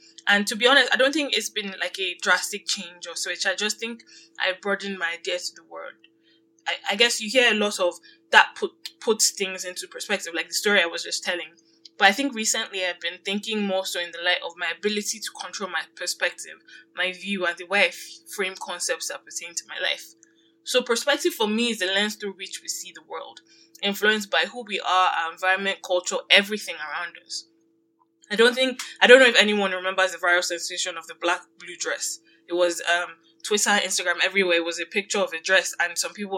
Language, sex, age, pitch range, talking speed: English, female, 10-29, 175-220 Hz, 225 wpm